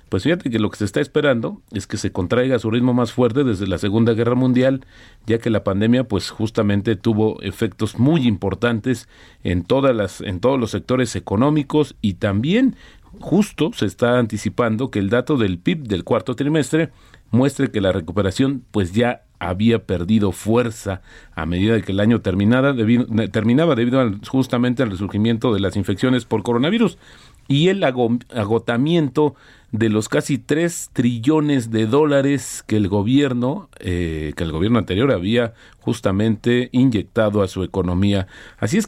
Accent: Mexican